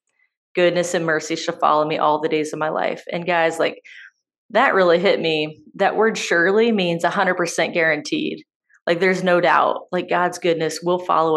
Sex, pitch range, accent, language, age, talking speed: female, 165-195 Hz, American, English, 20-39, 180 wpm